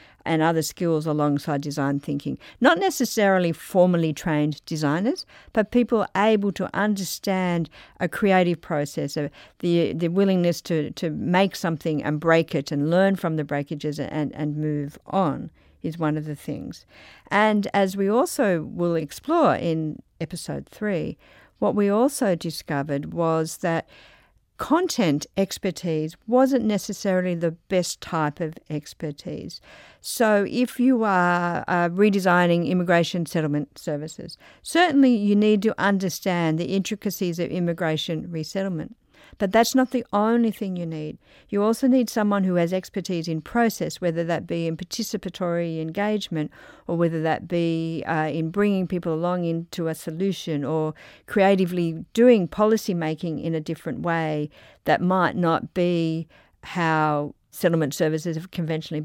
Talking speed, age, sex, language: 140 wpm, 50-69, female, English